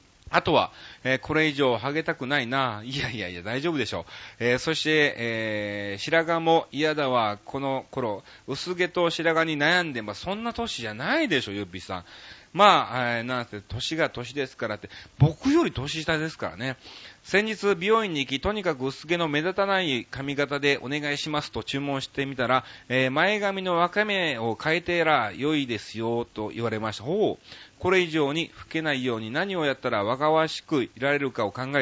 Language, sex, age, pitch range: Japanese, male, 30-49, 115-165 Hz